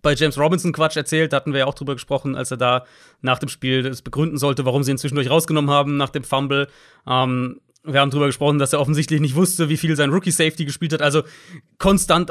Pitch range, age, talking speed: 135-160 Hz, 30-49, 220 wpm